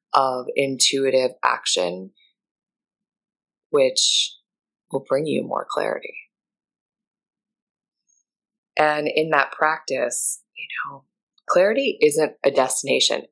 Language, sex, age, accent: English, female, 20-39, American